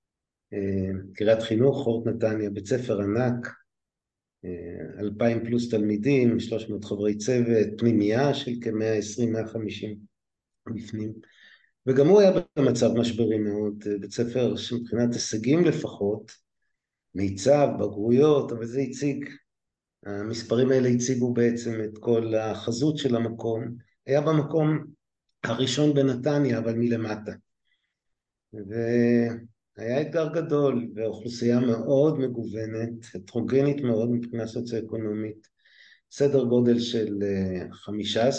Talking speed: 105 wpm